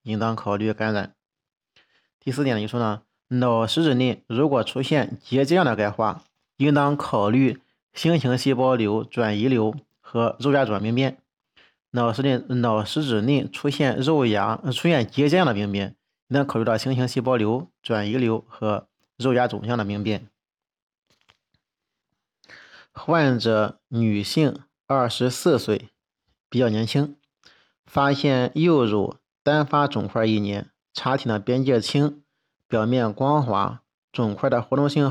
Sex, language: male, Chinese